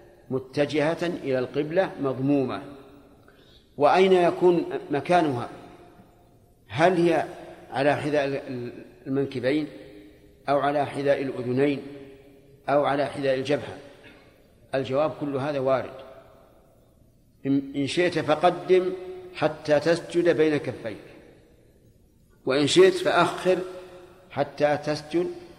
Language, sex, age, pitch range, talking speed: Arabic, male, 50-69, 130-155 Hz, 85 wpm